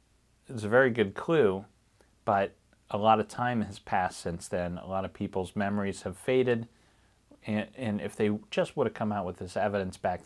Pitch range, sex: 105-140 Hz, male